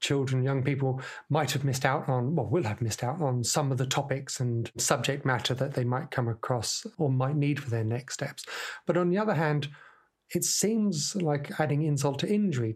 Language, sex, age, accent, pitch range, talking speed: English, male, 30-49, British, 125-150 Hz, 215 wpm